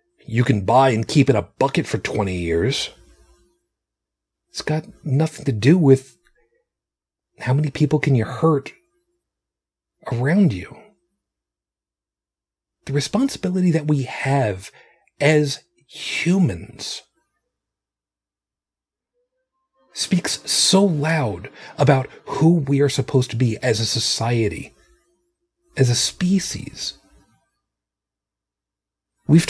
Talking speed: 100 wpm